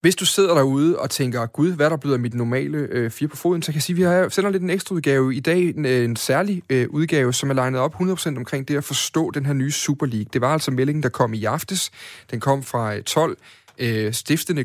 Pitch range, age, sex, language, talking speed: 120-150 Hz, 30-49, male, Danish, 240 wpm